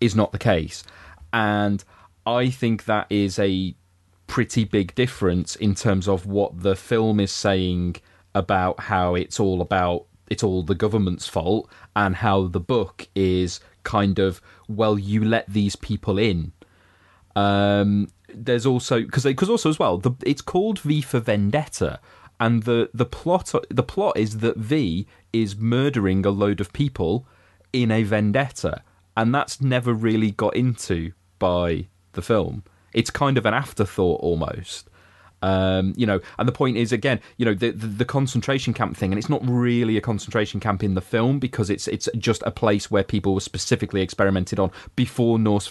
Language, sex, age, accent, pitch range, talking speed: English, male, 30-49, British, 95-115 Hz, 170 wpm